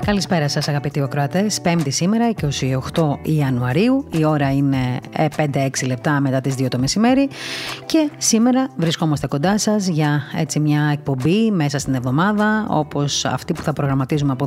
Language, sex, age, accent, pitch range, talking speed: Greek, female, 30-49, native, 140-175 Hz, 150 wpm